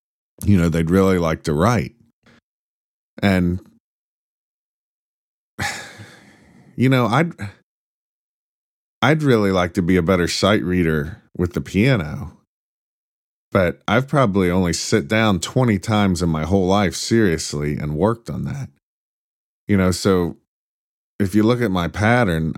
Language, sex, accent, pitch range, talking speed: English, male, American, 90-110 Hz, 130 wpm